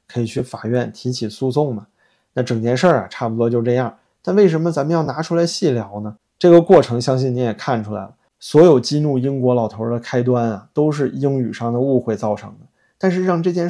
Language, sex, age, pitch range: Chinese, male, 20-39, 120-155 Hz